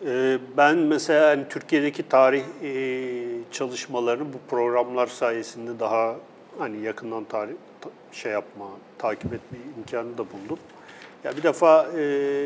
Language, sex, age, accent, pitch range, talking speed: Turkish, male, 50-69, native, 120-155 Hz, 130 wpm